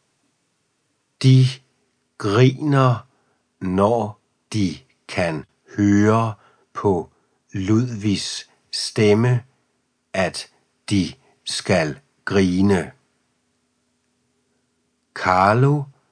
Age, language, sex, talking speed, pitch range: 60-79, Danish, male, 50 wpm, 95-130 Hz